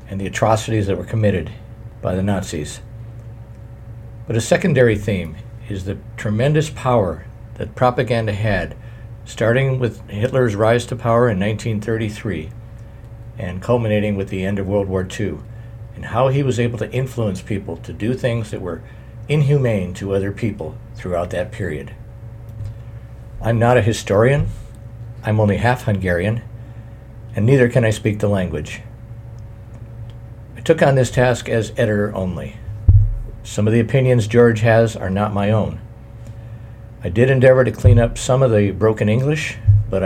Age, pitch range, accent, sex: 60-79, 105-115 Hz, American, male